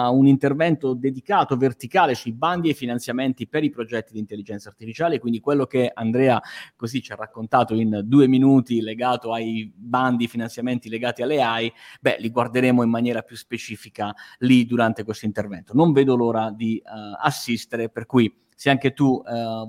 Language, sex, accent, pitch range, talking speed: Italian, male, native, 110-135 Hz, 170 wpm